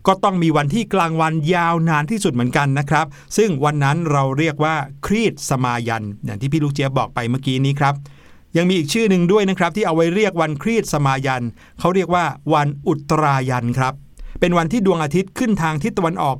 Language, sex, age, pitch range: Thai, male, 60-79, 135-180 Hz